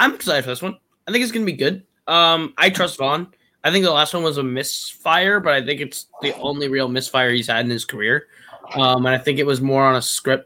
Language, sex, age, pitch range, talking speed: English, male, 20-39, 120-140 Hz, 270 wpm